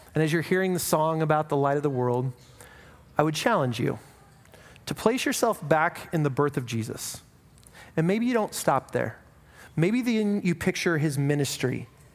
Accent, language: American, English